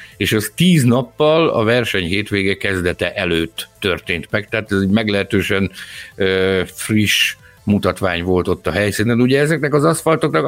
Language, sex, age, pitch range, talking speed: Hungarian, male, 60-79, 95-135 Hz, 150 wpm